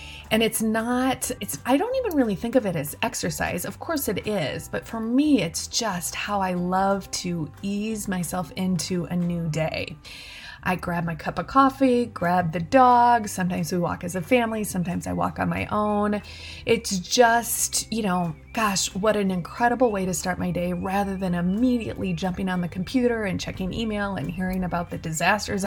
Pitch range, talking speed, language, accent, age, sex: 180-215 Hz, 190 wpm, English, American, 20-39, female